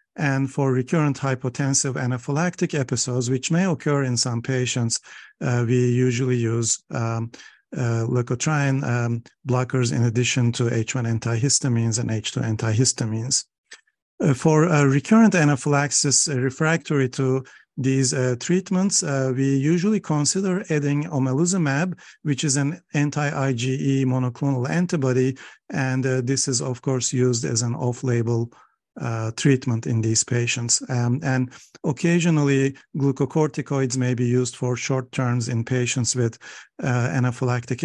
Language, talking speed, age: English, 130 wpm, 50-69